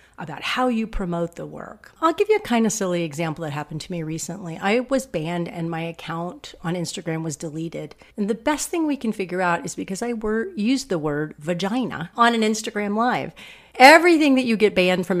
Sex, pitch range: female, 170-240 Hz